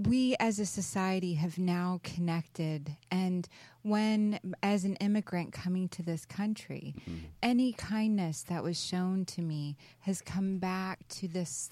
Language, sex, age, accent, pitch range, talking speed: English, female, 30-49, American, 170-205 Hz, 145 wpm